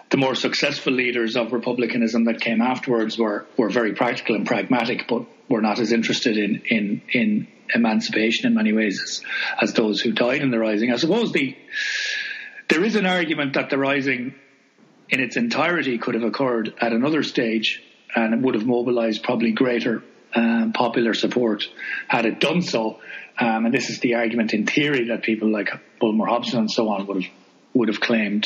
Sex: male